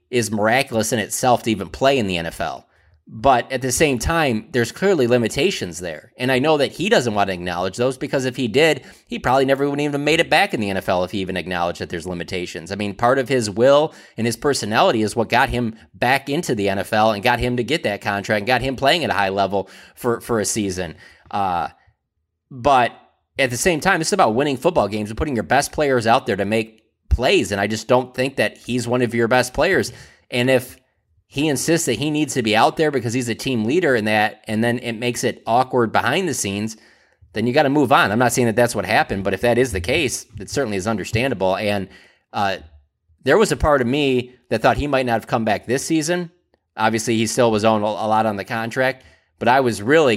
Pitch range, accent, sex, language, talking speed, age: 100-130 Hz, American, male, English, 245 wpm, 30-49